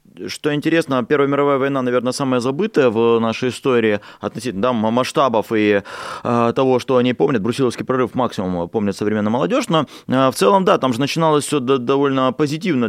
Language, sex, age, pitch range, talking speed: Russian, male, 20-39, 105-135 Hz, 160 wpm